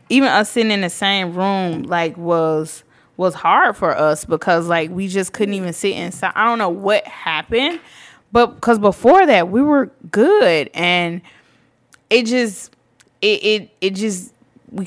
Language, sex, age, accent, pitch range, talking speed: English, female, 20-39, American, 170-225 Hz, 165 wpm